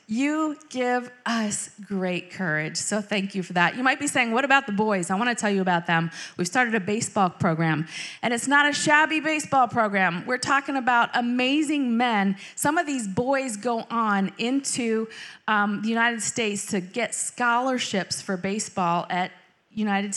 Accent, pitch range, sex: American, 185-245 Hz, female